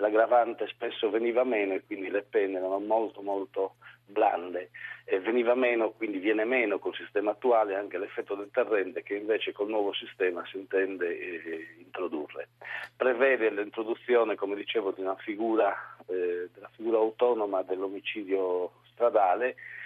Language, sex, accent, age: Italian, male, native, 50-69